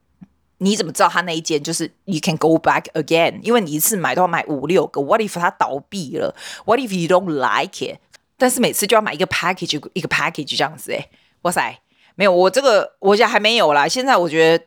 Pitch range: 165-255 Hz